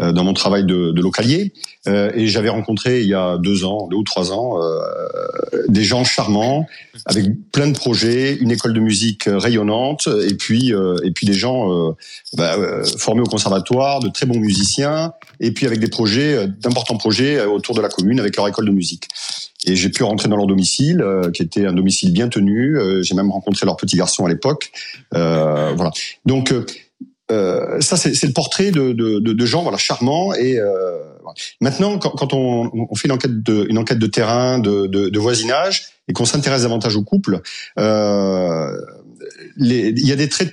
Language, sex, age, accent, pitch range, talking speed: French, male, 40-59, French, 100-140 Hz, 200 wpm